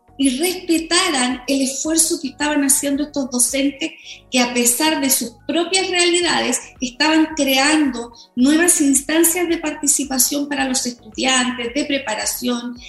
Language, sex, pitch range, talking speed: Spanish, female, 240-285 Hz, 125 wpm